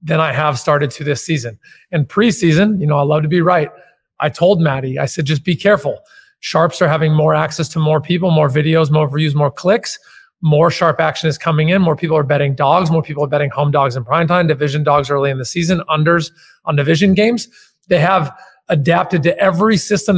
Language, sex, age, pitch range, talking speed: English, male, 30-49, 155-190 Hz, 215 wpm